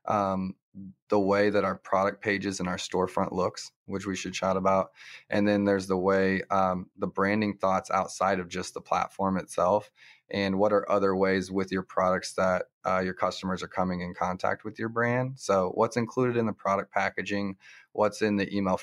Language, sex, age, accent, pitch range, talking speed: English, male, 20-39, American, 95-105 Hz, 195 wpm